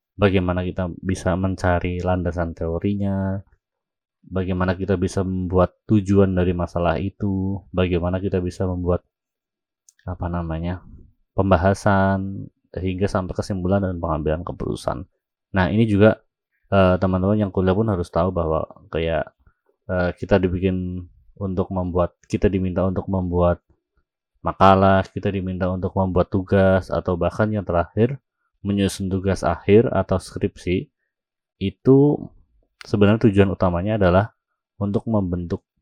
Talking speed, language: 115 wpm, Indonesian